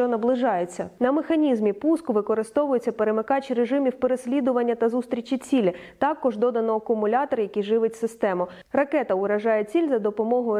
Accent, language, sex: native, Ukrainian, female